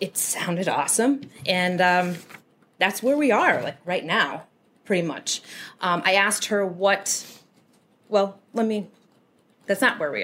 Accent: American